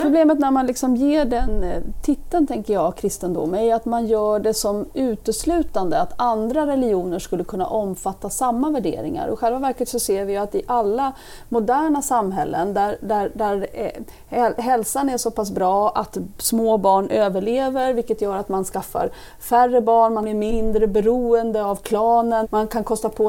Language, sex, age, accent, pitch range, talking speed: Swedish, female, 30-49, native, 200-245 Hz, 165 wpm